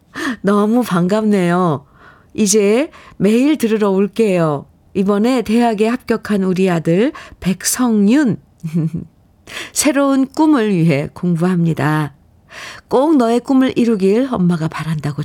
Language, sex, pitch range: Korean, female, 170-230 Hz